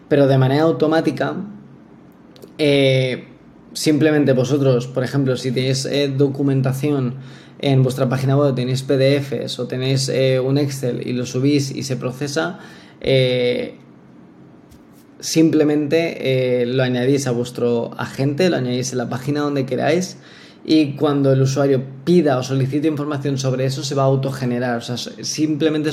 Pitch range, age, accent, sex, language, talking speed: 130-150 Hz, 20-39, Spanish, male, Spanish, 140 wpm